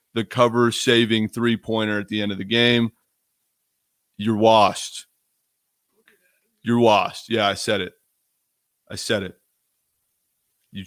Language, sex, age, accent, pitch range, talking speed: English, male, 30-49, American, 110-130 Hz, 115 wpm